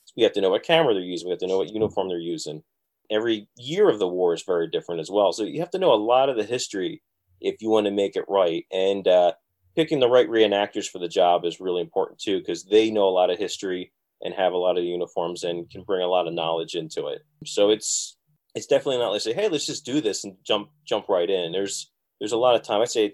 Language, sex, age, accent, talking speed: English, male, 30-49, American, 270 wpm